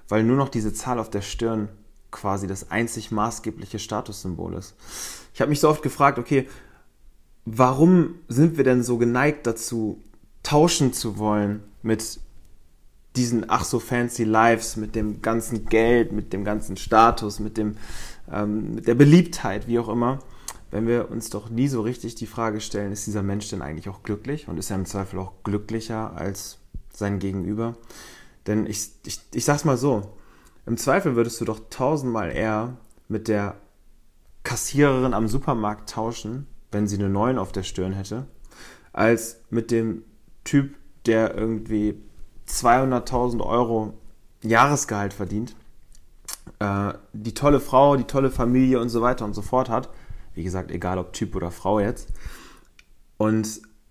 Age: 30-49